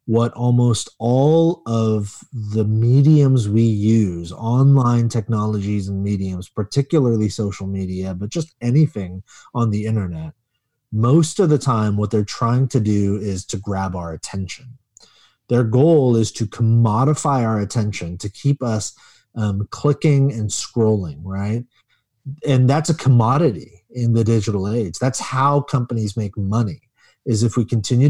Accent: American